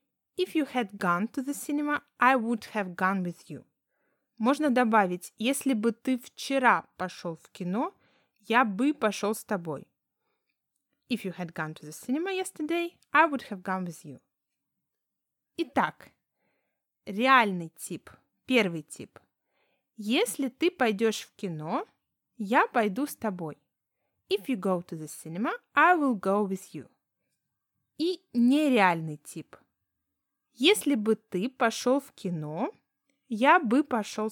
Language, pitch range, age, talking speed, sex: Russian, 190-285 Hz, 20-39, 135 wpm, female